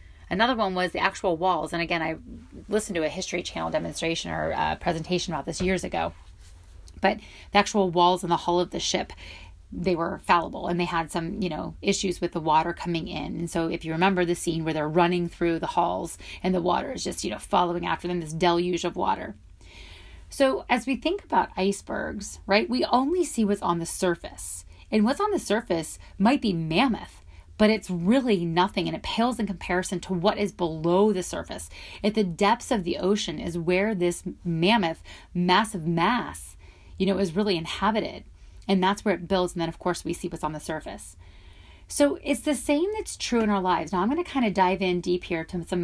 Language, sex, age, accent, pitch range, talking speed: English, female, 30-49, American, 160-200 Hz, 215 wpm